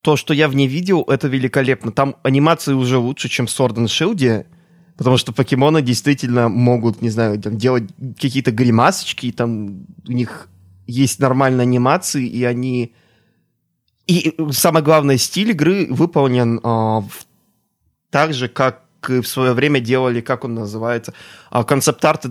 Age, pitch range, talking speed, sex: 20-39, 120-145 Hz, 150 wpm, male